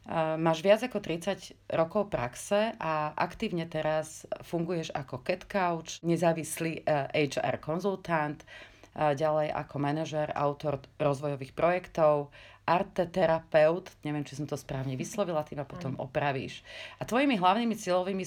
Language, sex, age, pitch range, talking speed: Slovak, female, 40-59, 145-175 Hz, 120 wpm